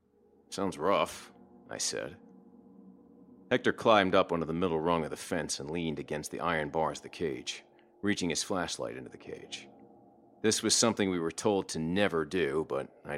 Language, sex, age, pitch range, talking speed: English, male, 40-59, 80-115 Hz, 180 wpm